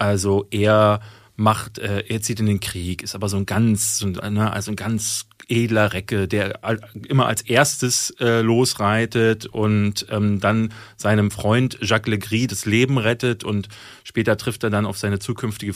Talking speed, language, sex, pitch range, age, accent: 175 wpm, German, male, 105-130 Hz, 30-49, German